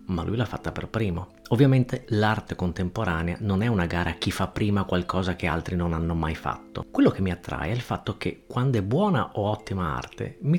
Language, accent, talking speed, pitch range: Italian, native, 220 wpm, 90-125 Hz